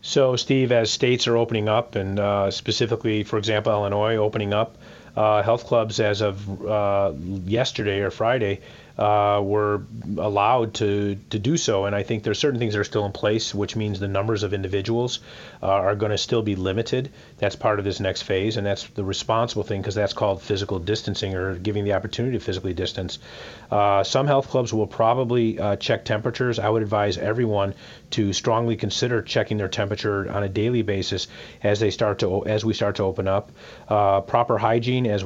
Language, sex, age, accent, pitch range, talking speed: English, male, 30-49, American, 100-115 Hz, 195 wpm